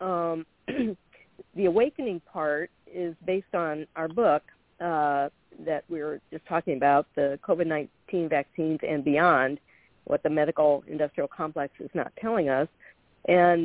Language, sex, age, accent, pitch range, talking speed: English, female, 50-69, American, 150-180 Hz, 135 wpm